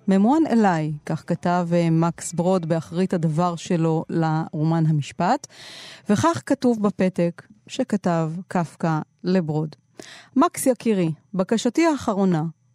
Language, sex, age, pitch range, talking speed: Hebrew, female, 30-49, 180-240 Hz, 100 wpm